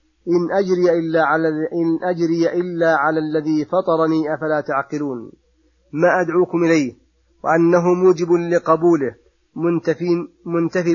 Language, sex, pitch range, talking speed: Arabic, male, 155-170 Hz, 110 wpm